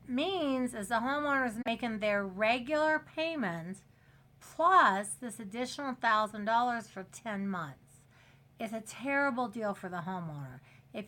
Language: English